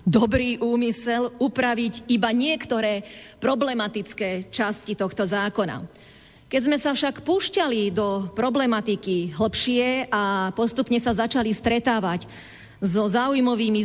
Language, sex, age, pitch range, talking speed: Slovak, female, 40-59, 200-250 Hz, 105 wpm